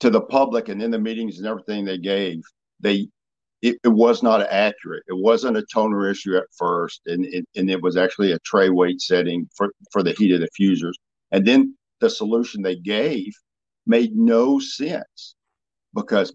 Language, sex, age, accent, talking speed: English, male, 50-69, American, 185 wpm